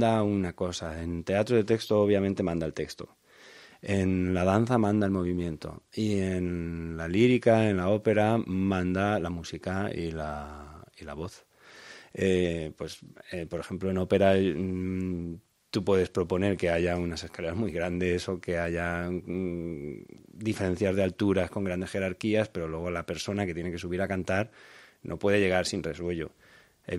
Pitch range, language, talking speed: 90-105 Hz, Spanish, 165 wpm